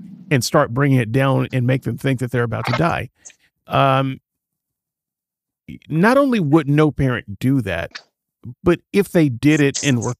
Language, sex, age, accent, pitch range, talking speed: English, male, 50-69, American, 120-160 Hz, 170 wpm